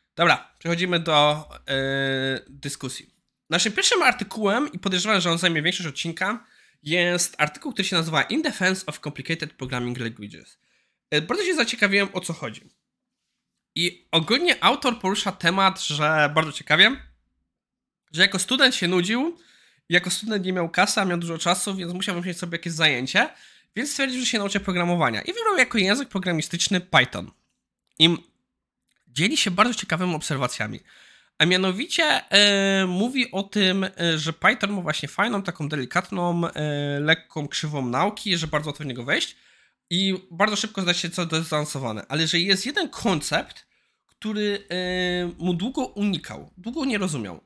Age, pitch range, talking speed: 20-39, 160-205 Hz, 155 wpm